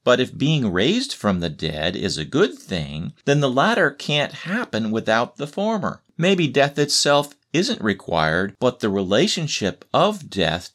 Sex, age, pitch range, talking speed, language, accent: male, 40-59, 90-135 Hz, 160 wpm, English, American